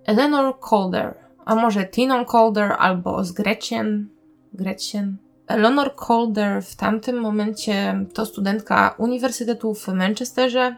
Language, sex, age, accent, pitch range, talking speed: Polish, female, 20-39, native, 190-230 Hz, 105 wpm